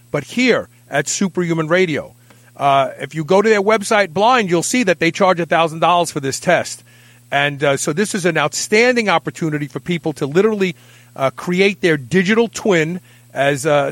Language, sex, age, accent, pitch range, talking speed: English, male, 40-59, American, 135-195 Hz, 175 wpm